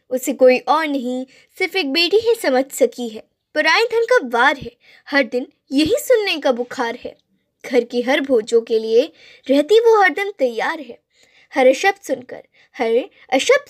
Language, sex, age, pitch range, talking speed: Telugu, female, 20-39, 255-380 Hz, 175 wpm